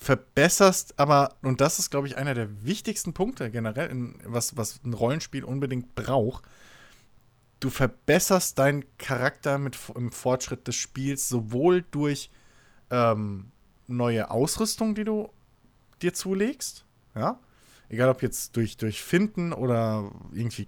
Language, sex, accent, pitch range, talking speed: German, male, German, 115-140 Hz, 130 wpm